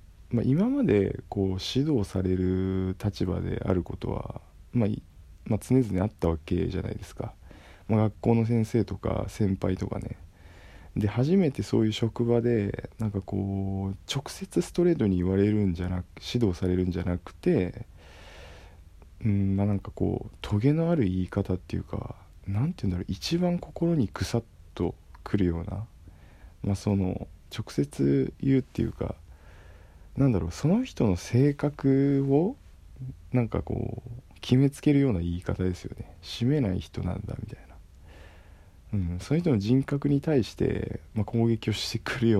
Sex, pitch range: male, 90-120 Hz